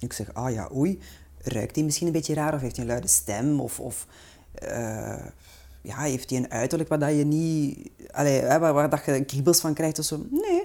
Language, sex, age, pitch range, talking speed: Dutch, female, 30-49, 140-230 Hz, 235 wpm